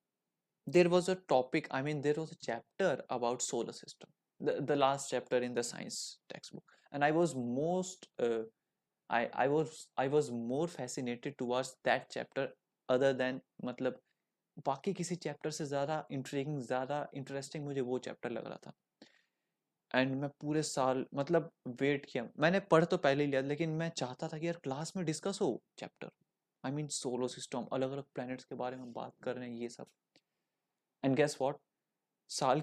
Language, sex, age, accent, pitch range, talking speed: Hindi, male, 20-39, native, 130-165 Hz, 175 wpm